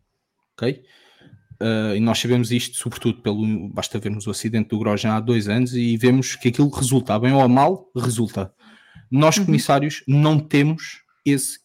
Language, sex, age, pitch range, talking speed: English, male, 20-39, 125-155 Hz, 160 wpm